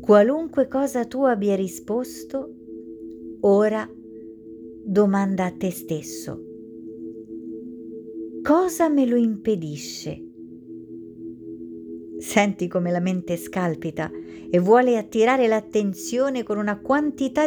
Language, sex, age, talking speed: Italian, female, 50-69, 90 wpm